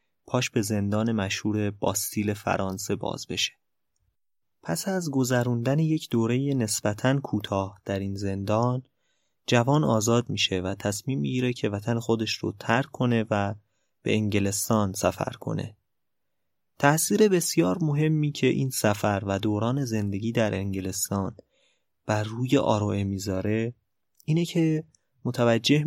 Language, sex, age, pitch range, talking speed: Persian, male, 20-39, 100-125 Hz, 125 wpm